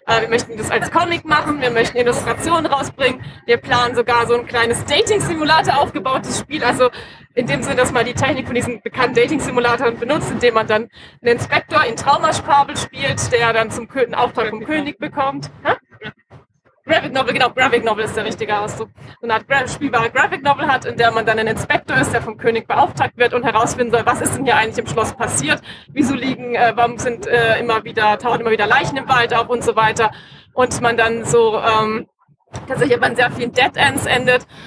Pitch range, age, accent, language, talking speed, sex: 225-250 Hz, 20-39, German, German, 195 wpm, female